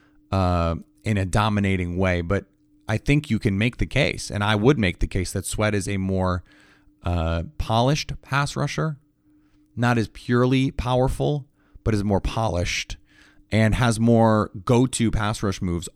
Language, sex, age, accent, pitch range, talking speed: English, male, 30-49, American, 95-140 Hz, 160 wpm